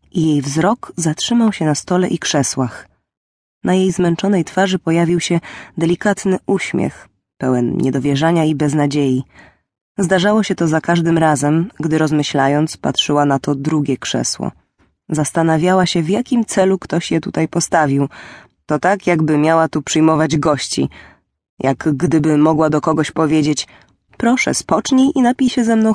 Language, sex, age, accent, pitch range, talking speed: English, female, 20-39, Polish, 145-190 Hz, 145 wpm